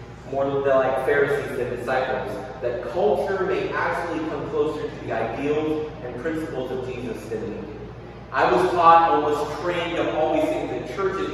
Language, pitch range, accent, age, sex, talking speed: English, 130-165 Hz, American, 30-49, male, 180 wpm